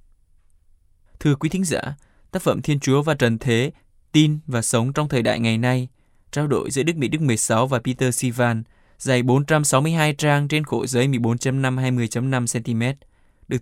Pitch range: 115-145 Hz